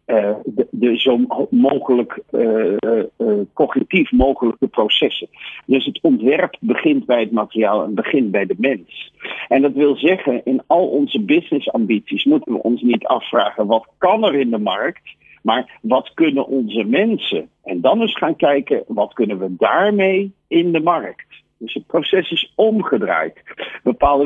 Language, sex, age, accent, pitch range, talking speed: Dutch, male, 50-69, Dutch, 125-205 Hz, 160 wpm